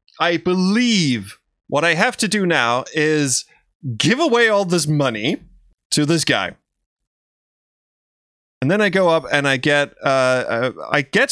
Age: 20-39